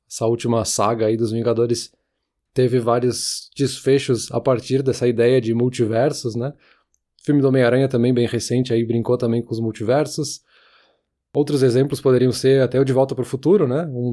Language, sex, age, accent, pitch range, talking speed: Portuguese, male, 20-39, Brazilian, 120-140 Hz, 165 wpm